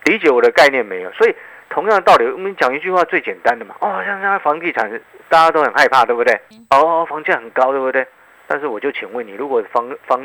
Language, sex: Chinese, male